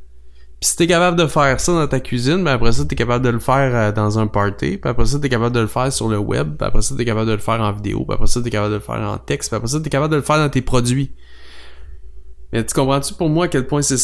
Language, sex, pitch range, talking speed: English, male, 100-135 Hz, 310 wpm